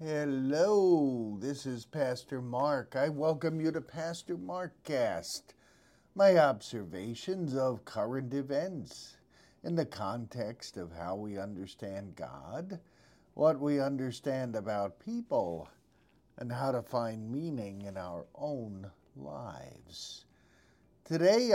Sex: male